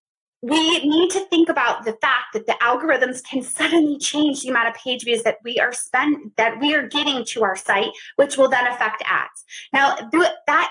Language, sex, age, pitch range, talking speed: English, female, 20-39, 220-310 Hz, 200 wpm